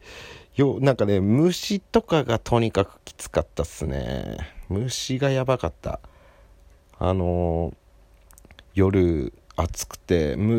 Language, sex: Japanese, male